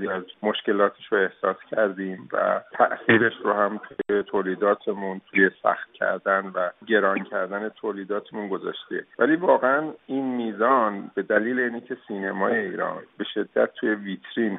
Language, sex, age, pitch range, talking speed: Persian, male, 50-69, 95-110 Hz, 130 wpm